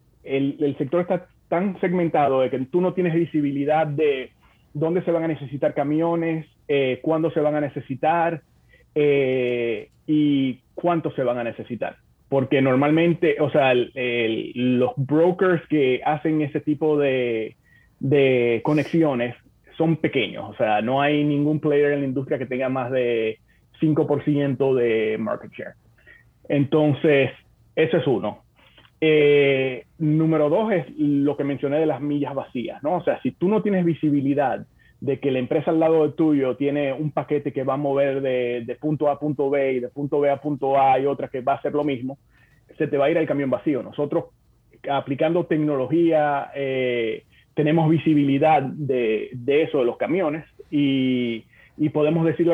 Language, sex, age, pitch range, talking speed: Spanish, male, 30-49, 130-155 Hz, 170 wpm